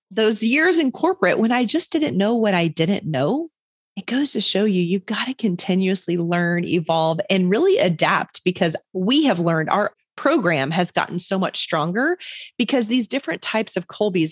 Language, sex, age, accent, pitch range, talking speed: English, female, 30-49, American, 170-230 Hz, 185 wpm